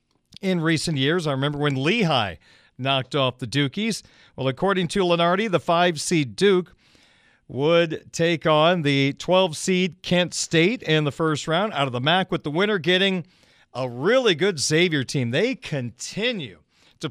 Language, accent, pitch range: English, American, 140-190 Hz